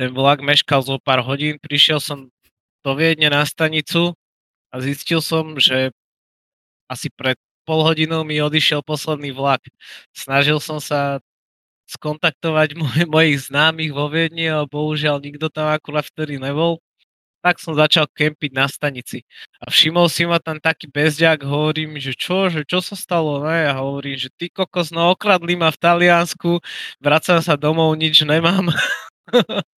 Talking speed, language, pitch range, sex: 150 wpm, Slovak, 145-170 Hz, male